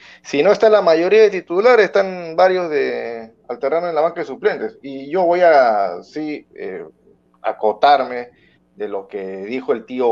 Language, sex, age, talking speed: Spanish, male, 40-59, 180 wpm